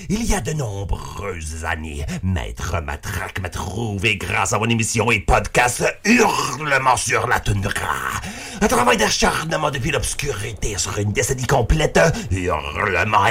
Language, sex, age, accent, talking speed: French, male, 50-69, French, 135 wpm